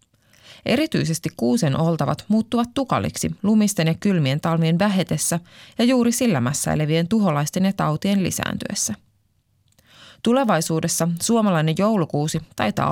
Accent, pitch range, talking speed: native, 130-195 Hz, 100 wpm